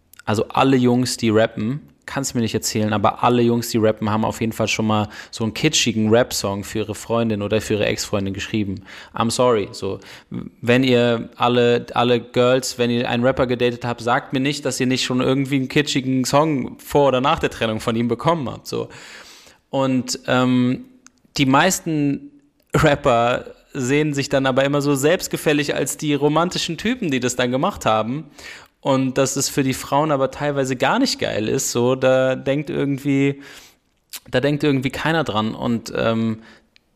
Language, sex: German, male